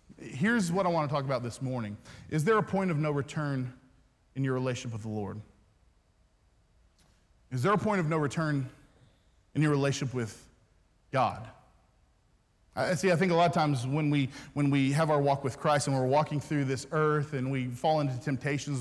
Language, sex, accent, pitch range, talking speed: English, male, American, 135-190 Hz, 200 wpm